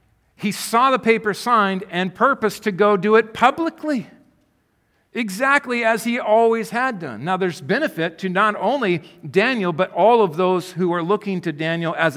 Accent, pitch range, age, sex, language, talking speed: American, 150-210 Hz, 50-69, male, English, 175 wpm